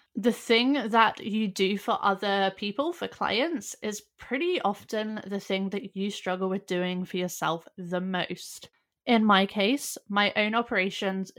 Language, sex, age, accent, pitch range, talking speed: English, female, 20-39, British, 195-245 Hz, 160 wpm